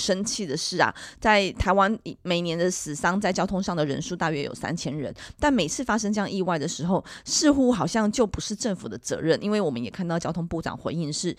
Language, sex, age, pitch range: Chinese, female, 30-49, 160-220 Hz